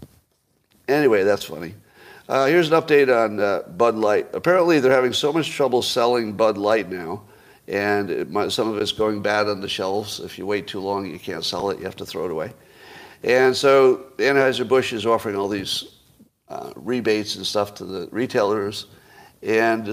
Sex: male